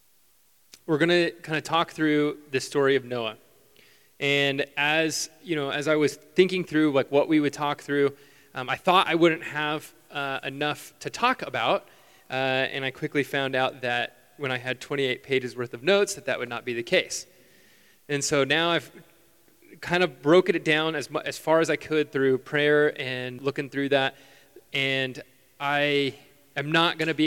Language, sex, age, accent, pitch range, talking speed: English, male, 20-39, American, 135-165 Hz, 195 wpm